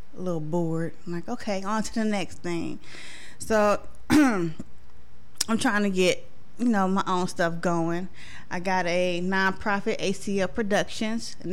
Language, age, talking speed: English, 20-39, 145 wpm